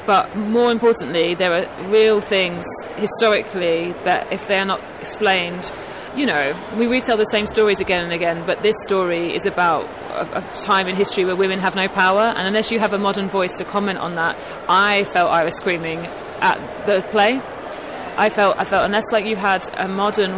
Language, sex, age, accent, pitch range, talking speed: English, female, 30-49, British, 190-220 Hz, 200 wpm